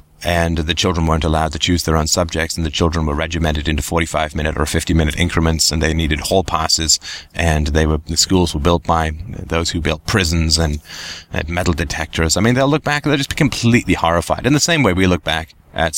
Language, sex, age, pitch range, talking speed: English, male, 30-49, 75-90 Hz, 235 wpm